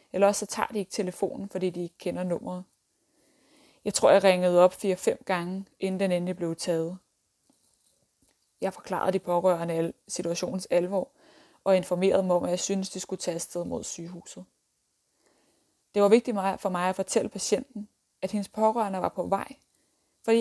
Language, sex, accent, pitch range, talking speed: Danish, female, native, 180-210 Hz, 170 wpm